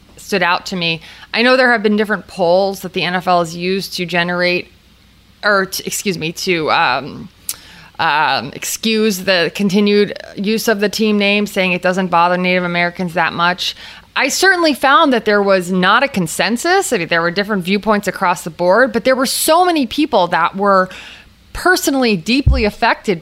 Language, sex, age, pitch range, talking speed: English, female, 20-39, 175-210 Hz, 180 wpm